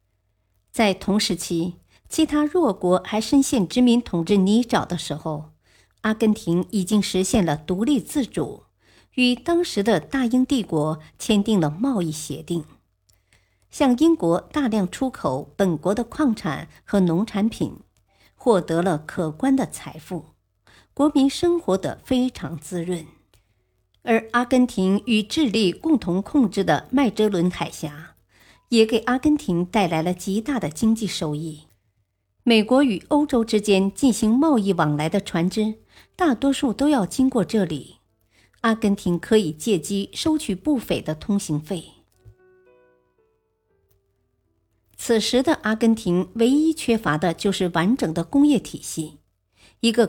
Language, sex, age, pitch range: Chinese, male, 50-69, 155-230 Hz